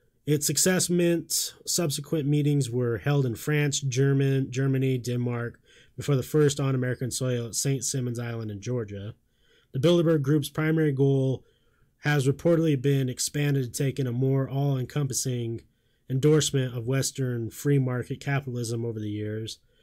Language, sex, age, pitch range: English, male, 20-39, 120-145 Hz